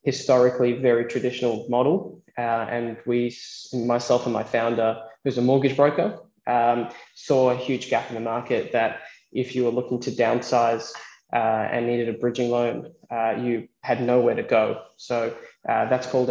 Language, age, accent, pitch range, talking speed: English, 20-39, Australian, 120-130 Hz, 170 wpm